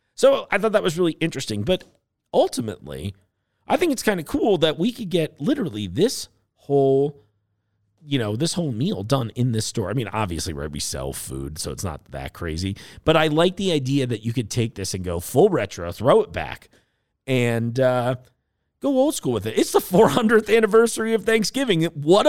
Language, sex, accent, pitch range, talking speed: English, male, American, 100-160 Hz, 195 wpm